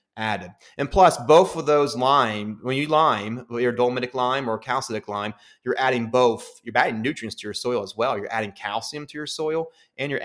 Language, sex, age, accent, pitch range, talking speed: English, male, 30-49, American, 110-130 Hz, 205 wpm